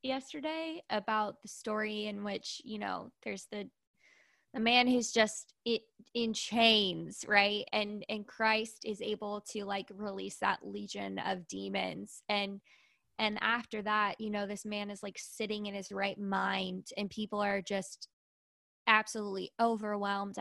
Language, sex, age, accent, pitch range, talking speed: English, female, 20-39, American, 200-220 Hz, 145 wpm